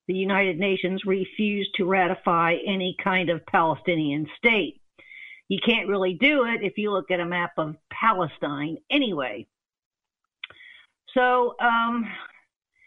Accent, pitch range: American, 185-225 Hz